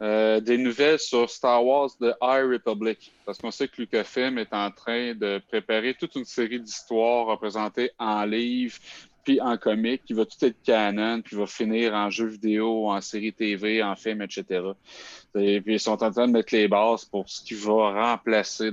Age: 30-49